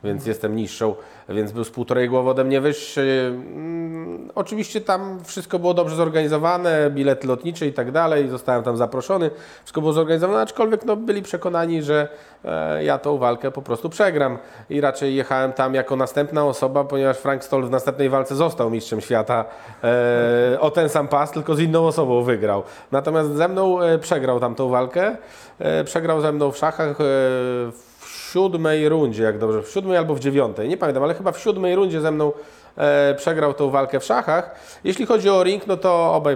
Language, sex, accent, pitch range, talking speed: Polish, male, native, 125-155 Hz, 175 wpm